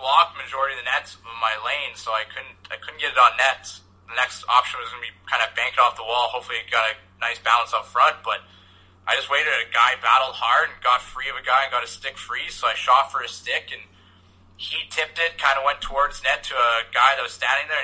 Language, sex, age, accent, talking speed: English, male, 20-39, American, 260 wpm